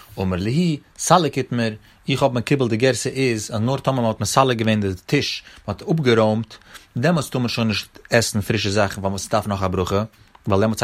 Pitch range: 105-150 Hz